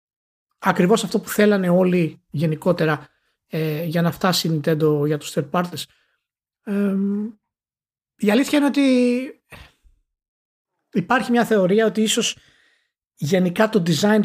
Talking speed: 120 wpm